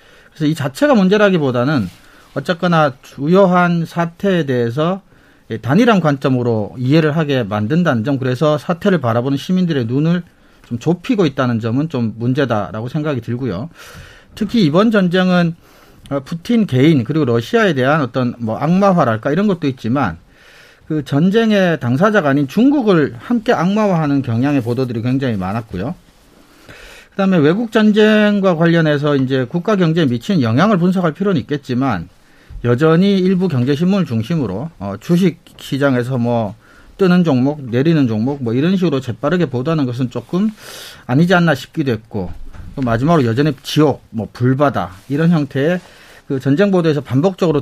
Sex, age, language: male, 40-59, Korean